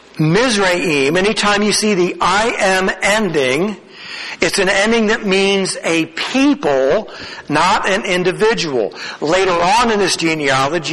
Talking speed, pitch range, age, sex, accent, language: 125 wpm, 155-210 Hz, 60-79, male, American, English